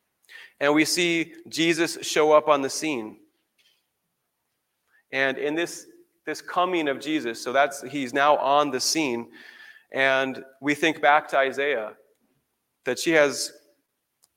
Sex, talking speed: male, 135 wpm